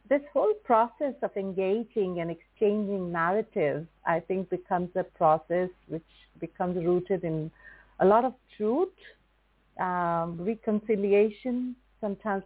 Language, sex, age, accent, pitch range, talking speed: English, female, 50-69, Indian, 175-220 Hz, 115 wpm